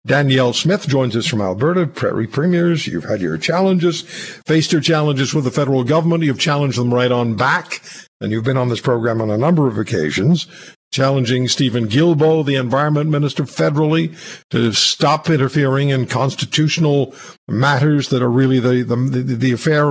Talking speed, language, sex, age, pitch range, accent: 170 wpm, English, male, 60-79, 130-165 Hz, American